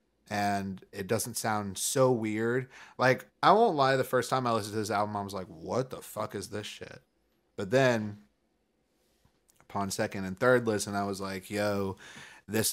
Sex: male